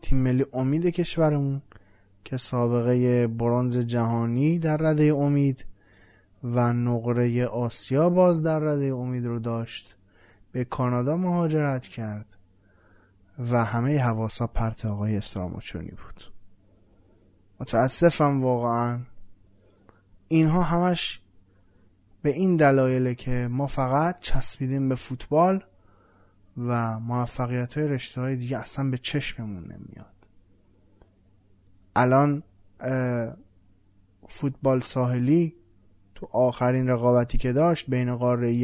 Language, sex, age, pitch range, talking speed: Persian, male, 20-39, 100-135 Hz, 95 wpm